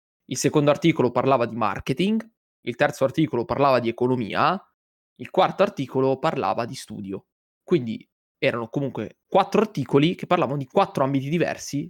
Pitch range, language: 125-165 Hz, Italian